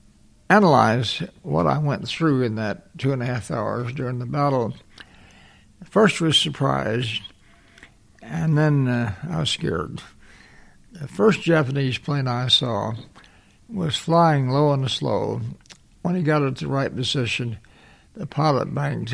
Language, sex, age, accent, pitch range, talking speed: English, male, 60-79, American, 125-155 Hz, 140 wpm